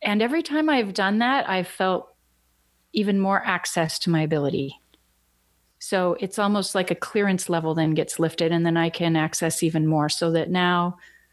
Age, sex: 30-49, female